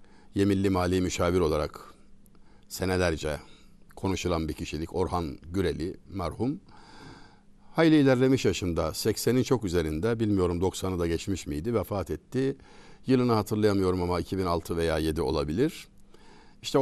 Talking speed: 115 wpm